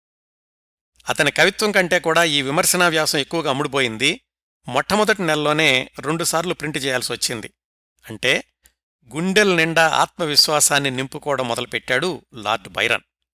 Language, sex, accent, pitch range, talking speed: Telugu, male, native, 120-165 Hz, 100 wpm